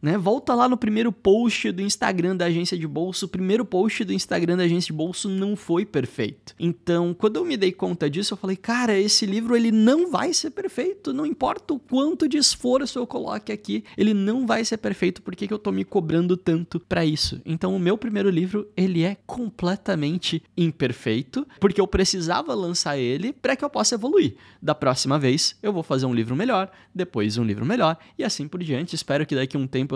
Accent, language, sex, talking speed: Brazilian, Portuguese, male, 210 wpm